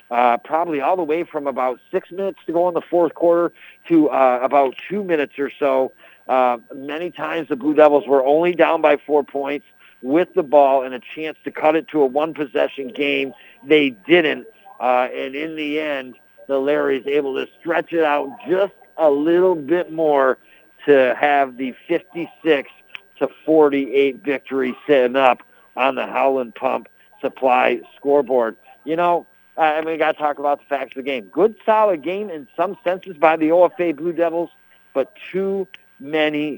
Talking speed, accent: 180 wpm, American